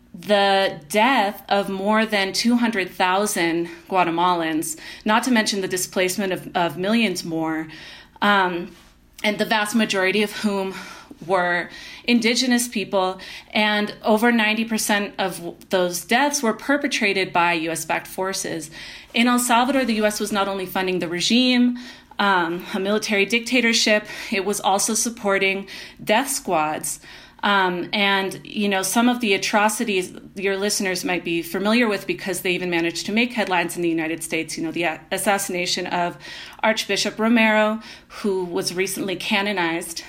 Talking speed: 140 wpm